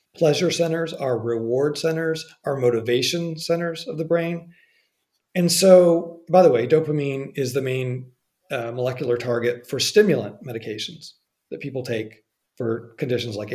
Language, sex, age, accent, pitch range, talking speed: English, male, 40-59, American, 125-165 Hz, 140 wpm